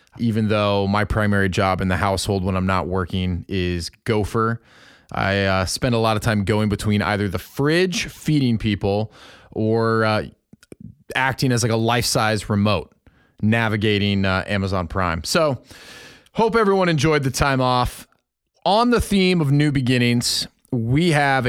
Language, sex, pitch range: English, male, 105-140 Hz